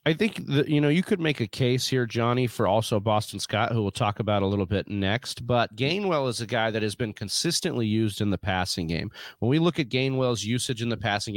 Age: 30-49